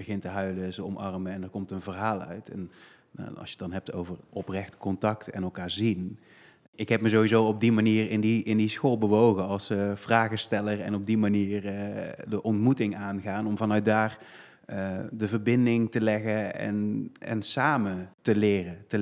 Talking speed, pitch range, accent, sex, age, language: 190 wpm, 100-115 Hz, Dutch, male, 30-49, Dutch